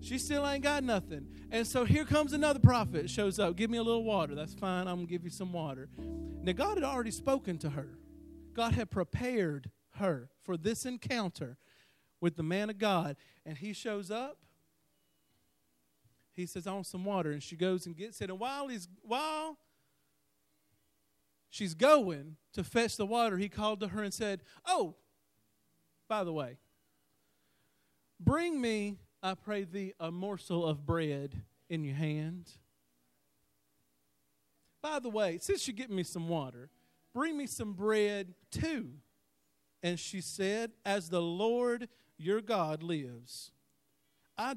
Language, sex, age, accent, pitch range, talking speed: English, male, 40-59, American, 145-220 Hz, 160 wpm